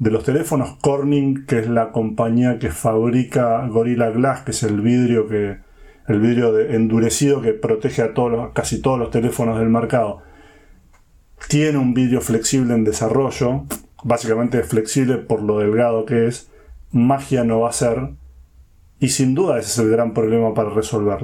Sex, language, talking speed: male, Spanish, 170 wpm